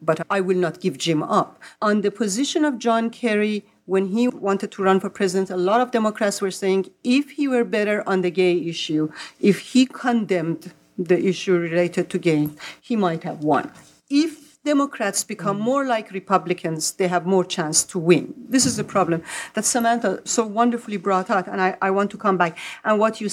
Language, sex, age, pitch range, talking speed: English, female, 40-59, 180-235 Hz, 200 wpm